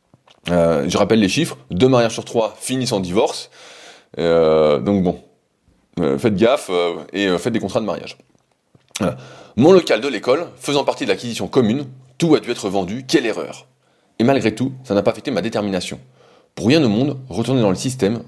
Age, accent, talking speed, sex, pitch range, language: 20-39, French, 195 wpm, male, 95-130 Hz, French